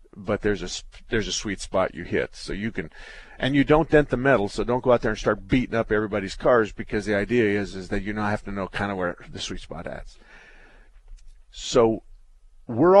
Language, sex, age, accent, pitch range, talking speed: English, male, 50-69, American, 100-120 Hz, 225 wpm